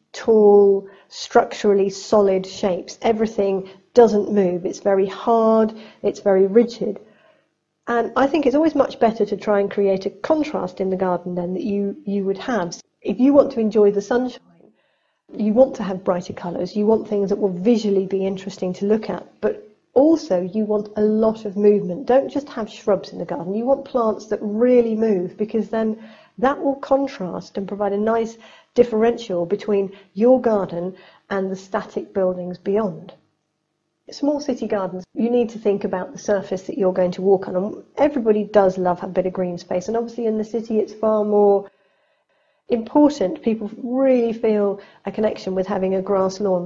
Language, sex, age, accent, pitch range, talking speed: English, female, 40-59, British, 195-230 Hz, 180 wpm